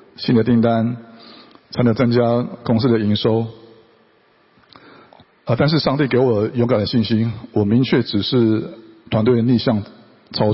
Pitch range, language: 105-125 Hz, Chinese